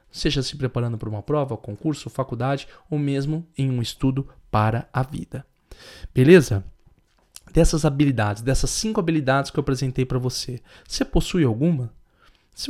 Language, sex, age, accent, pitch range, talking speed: Portuguese, male, 20-39, Brazilian, 135-175 Hz, 145 wpm